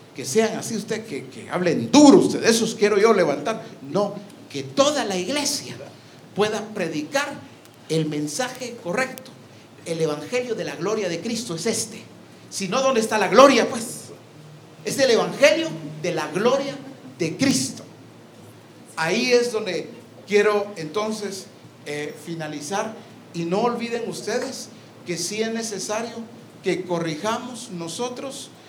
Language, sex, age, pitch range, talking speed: English, male, 50-69, 165-225 Hz, 140 wpm